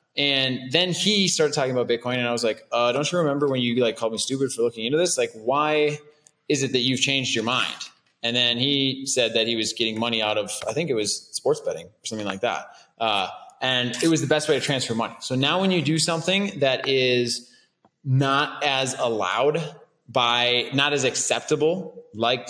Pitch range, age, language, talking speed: 125-155 Hz, 20-39, English, 215 wpm